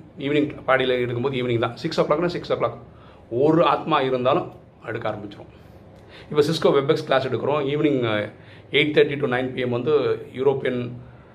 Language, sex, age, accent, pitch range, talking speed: Tamil, male, 40-59, native, 115-150 Hz, 160 wpm